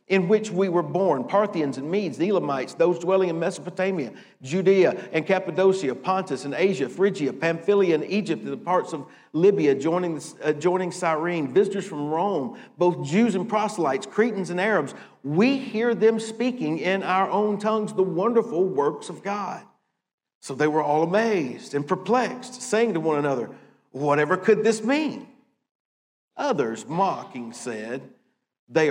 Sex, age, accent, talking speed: male, 50-69, American, 155 wpm